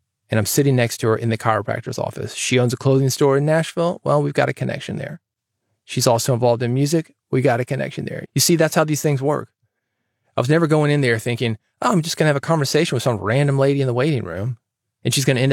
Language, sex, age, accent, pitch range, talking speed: English, male, 30-49, American, 120-160 Hz, 265 wpm